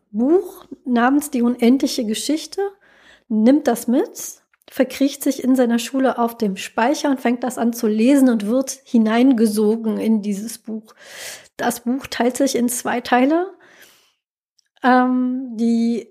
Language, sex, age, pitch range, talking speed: German, female, 20-39, 225-270 Hz, 135 wpm